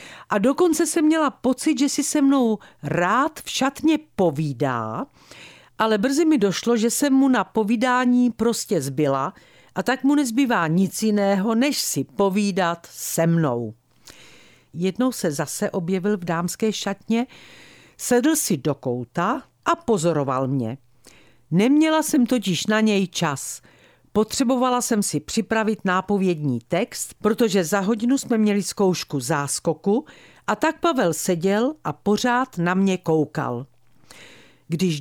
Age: 50-69